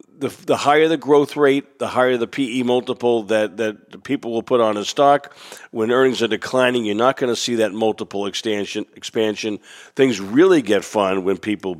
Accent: American